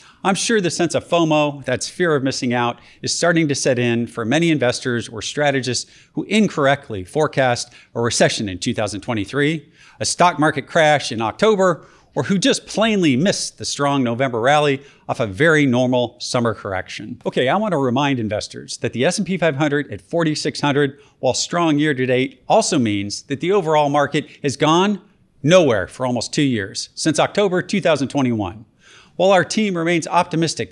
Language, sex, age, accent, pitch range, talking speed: English, male, 40-59, American, 125-165 Hz, 165 wpm